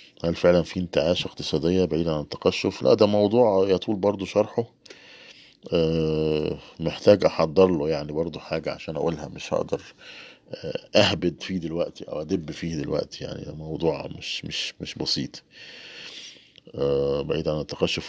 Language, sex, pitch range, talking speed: Arabic, male, 80-90 Hz, 135 wpm